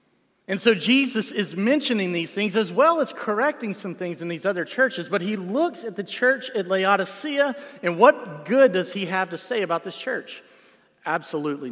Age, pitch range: 40-59, 155-210 Hz